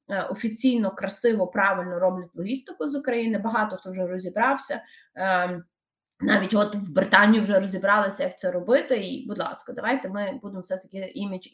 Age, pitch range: 20-39, 205-275 Hz